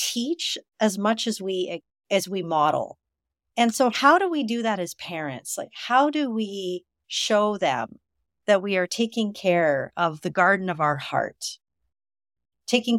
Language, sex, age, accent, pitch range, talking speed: English, female, 50-69, American, 170-220 Hz, 160 wpm